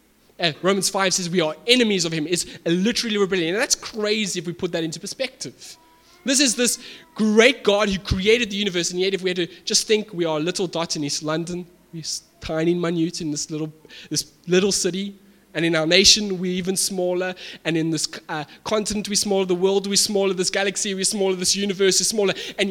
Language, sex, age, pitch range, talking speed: English, male, 20-39, 160-205 Hz, 215 wpm